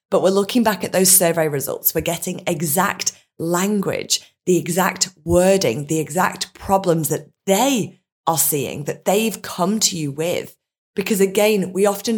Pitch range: 155-195 Hz